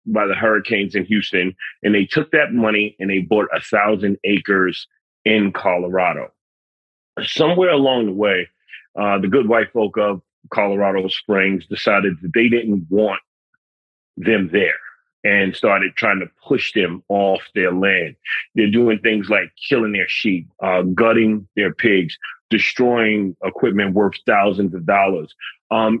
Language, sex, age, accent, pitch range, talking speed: English, male, 30-49, American, 95-115 Hz, 150 wpm